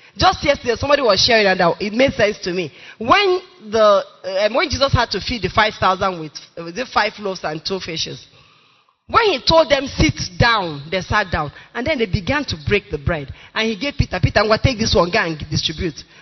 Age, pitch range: 20-39, 175-260 Hz